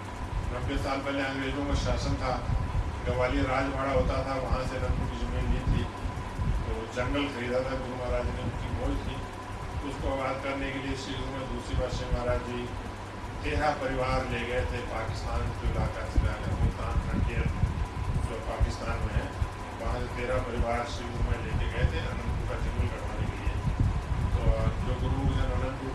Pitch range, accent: 90-120 Hz, native